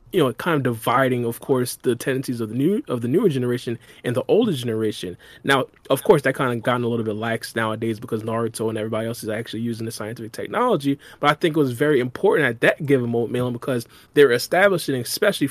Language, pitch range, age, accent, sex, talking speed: English, 115-140 Hz, 20-39, American, male, 225 wpm